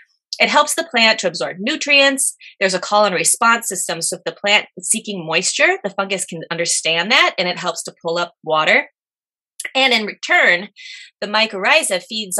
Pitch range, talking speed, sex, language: 185-250 Hz, 185 wpm, female, English